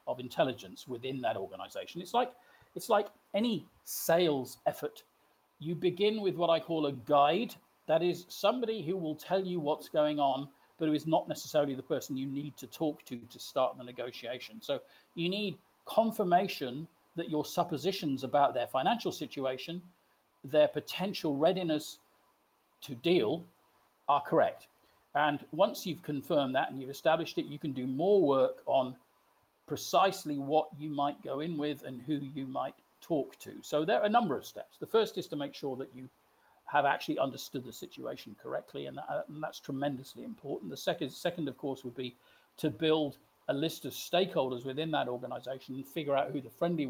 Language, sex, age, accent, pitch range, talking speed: English, male, 50-69, British, 135-175 Hz, 180 wpm